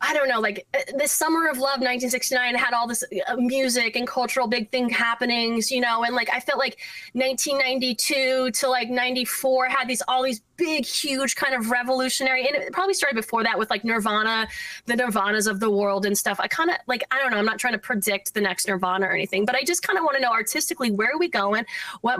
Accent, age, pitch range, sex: American, 20-39, 215-275 Hz, female